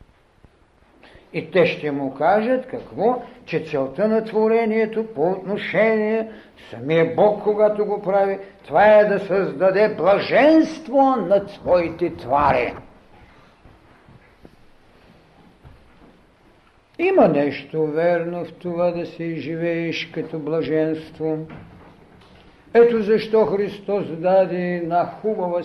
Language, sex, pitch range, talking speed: Bulgarian, male, 150-210 Hz, 95 wpm